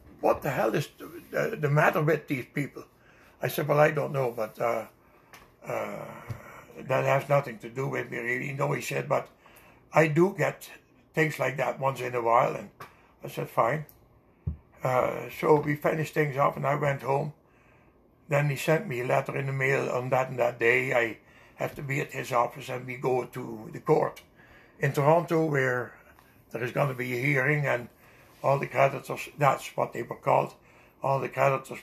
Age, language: 60-79, English